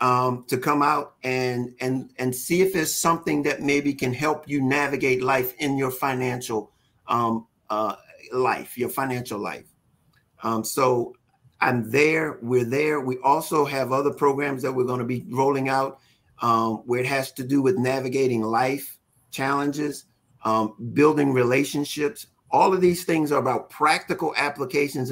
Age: 50-69